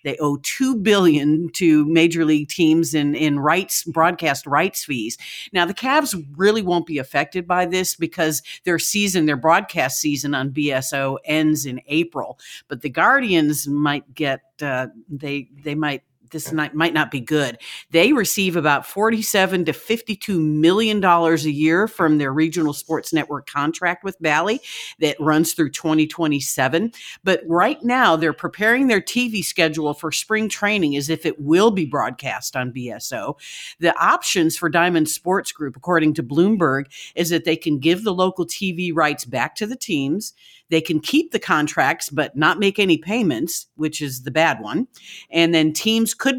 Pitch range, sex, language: 150-190 Hz, female, English